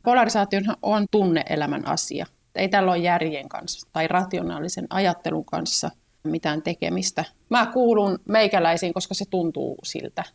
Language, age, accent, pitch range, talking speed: Finnish, 30-49, native, 170-210 Hz, 130 wpm